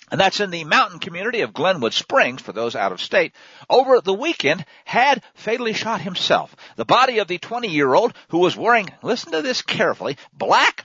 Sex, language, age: male, English, 50-69